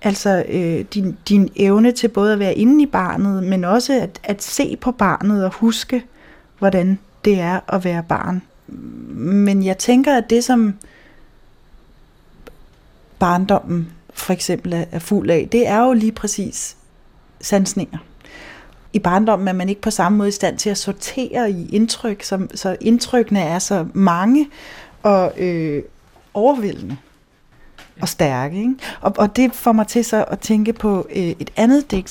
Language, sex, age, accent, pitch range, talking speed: Danish, female, 30-49, native, 180-225 Hz, 160 wpm